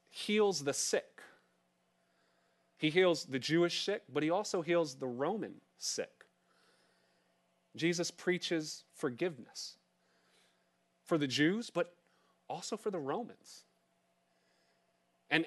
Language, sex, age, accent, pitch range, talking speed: English, male, 30-49, American, 140-180 Hz, 105 wpm